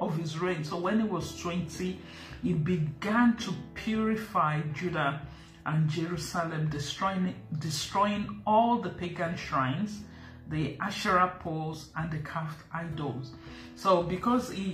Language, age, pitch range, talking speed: English, 50-69, 150-185 Hz, 125 wpm